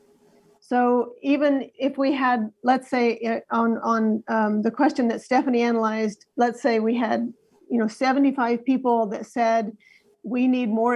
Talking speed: 155 wpm